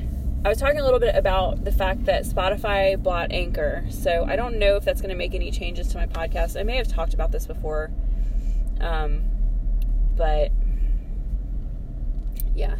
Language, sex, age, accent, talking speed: English, female, 20-39, American, 175 wpm